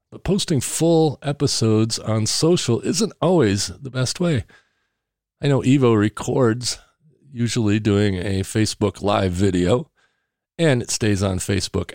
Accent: American